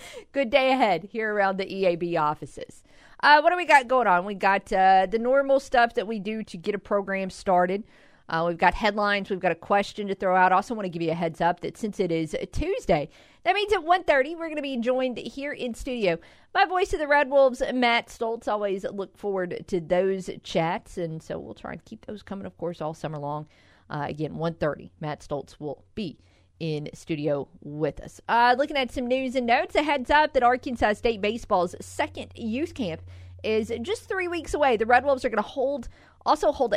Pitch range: 175-255 Hz